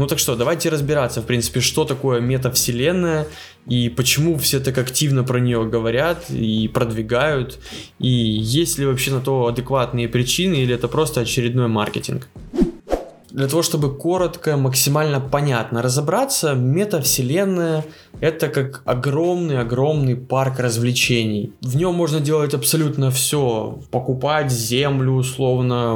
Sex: male